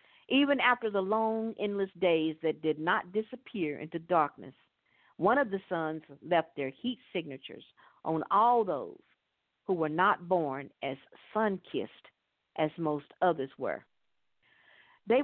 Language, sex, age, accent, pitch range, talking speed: English, female, 50-69, American, 160-220 Hz, 135 wpm